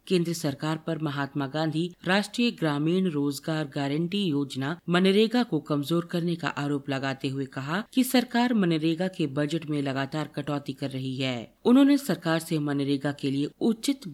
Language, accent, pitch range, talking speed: Hindi, native, 145-195 Hz, 155 wpm